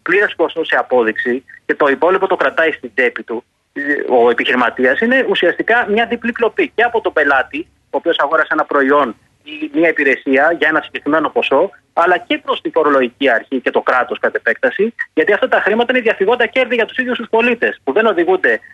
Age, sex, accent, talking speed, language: 30-49, male, native, 200 wpm, Greek